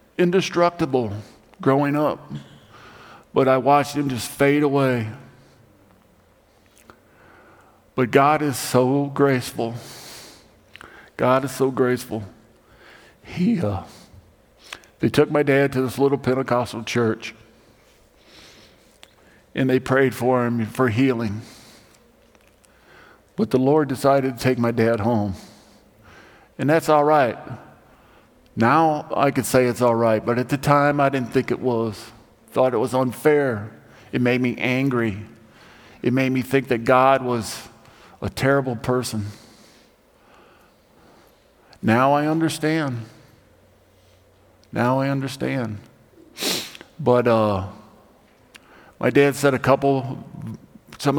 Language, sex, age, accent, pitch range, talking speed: English, male, 50-69, American, 115-135 Hz, 115 wpm